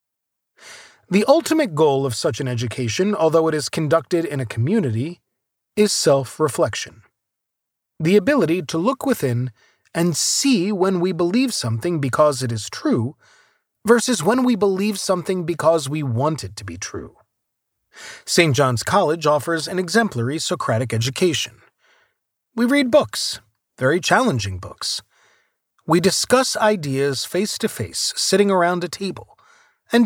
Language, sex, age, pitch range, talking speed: English, male, 30-49, 140-205 Hz, 130 wpm